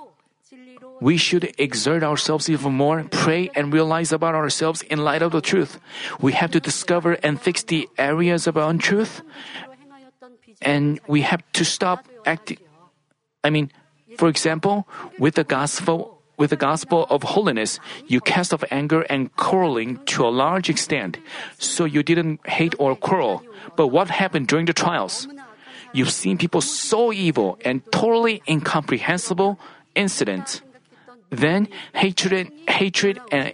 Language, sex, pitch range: Korean, male, 150-195 Hz